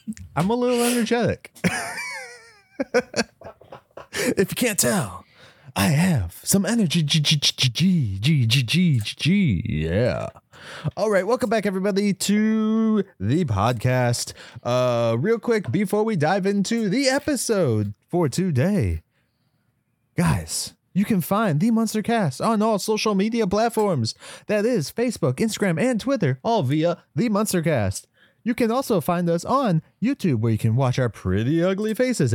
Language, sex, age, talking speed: English, male, 30-49, 135 wpm